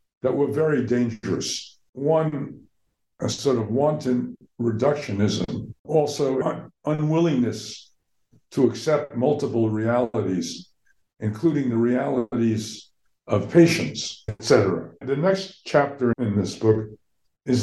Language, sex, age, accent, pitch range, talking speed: English, male, 60-79, American, 110-140 Hz, 105 wpm